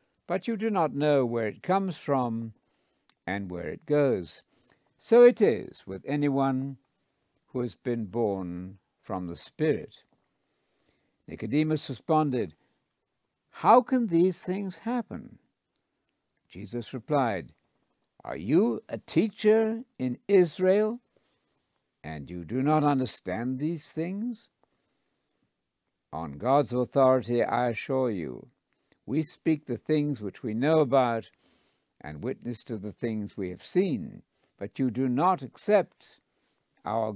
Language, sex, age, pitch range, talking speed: English, male, 60-79, 115-160 Hz, 120 wpm